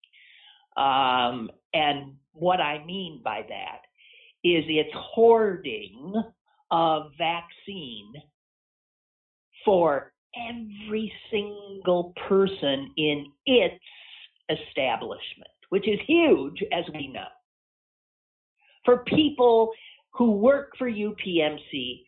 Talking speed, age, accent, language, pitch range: 85 wpm, 50-69, American, English, 180-290 Hz